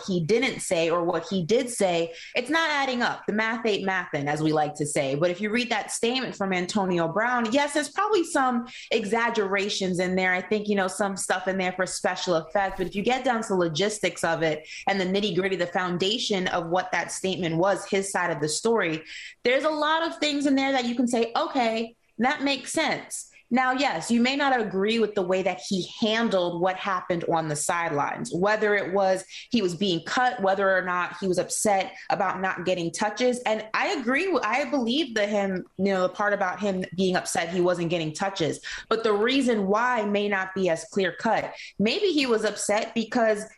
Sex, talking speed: female, 210 wpm